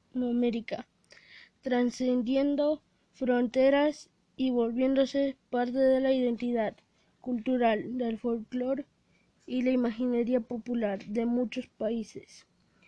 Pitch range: 245-275 Hz